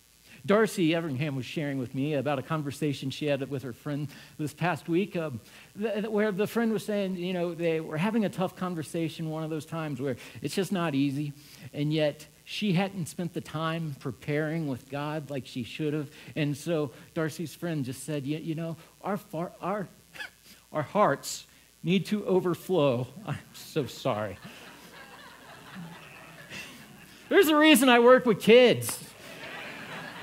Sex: male